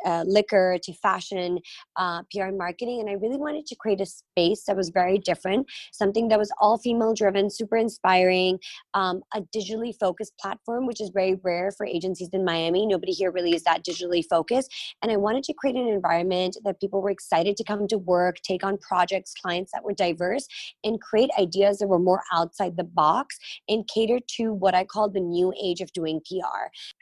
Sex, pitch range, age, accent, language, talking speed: female, 180-210 Hz, 20-39, American, English, 200 wpm